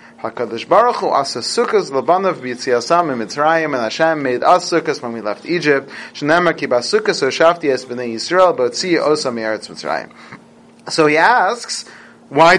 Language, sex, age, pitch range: English, male, 30-49, 150-210 Hz